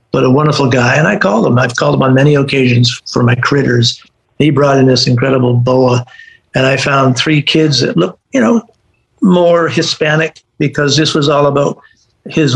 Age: 50-69